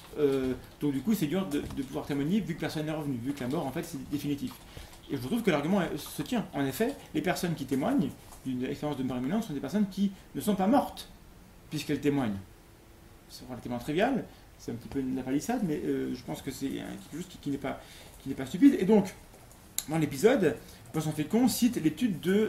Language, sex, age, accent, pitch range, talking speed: French, male, 30-49, French, 135-180 Hz, 230 wpm